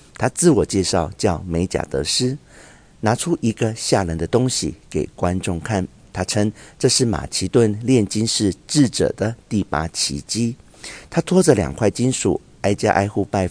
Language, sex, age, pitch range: Chinese, male, 50-69, 95-130 Hz